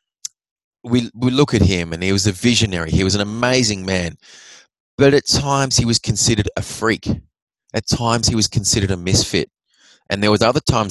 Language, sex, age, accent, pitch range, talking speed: English, male, 30-49, Australian, 95-120 Hz, 195 wpm